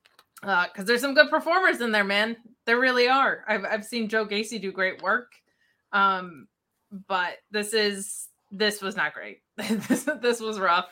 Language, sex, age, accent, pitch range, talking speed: English, female, 20-39, American, 190-245 Hz, 175 wpm